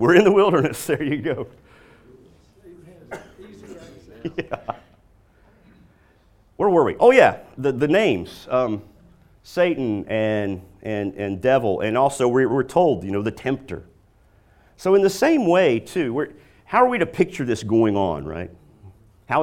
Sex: male